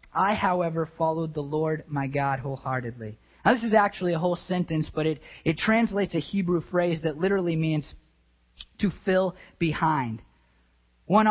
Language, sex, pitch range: English, male, 155-200 Hz